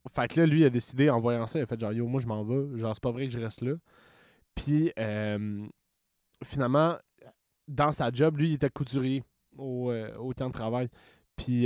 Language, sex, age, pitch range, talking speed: French, male, 20-39, 115-140 Hz, 225 wpm